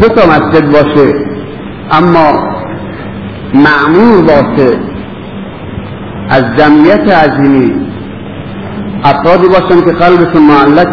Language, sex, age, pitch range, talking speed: Persian, male, 50-69, 130-155 Hz, 75 wpm